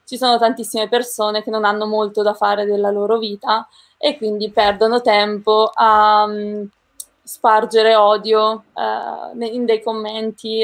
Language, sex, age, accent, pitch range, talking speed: Italian, female, 20-39, native, 210-230 Hz, 140 wpm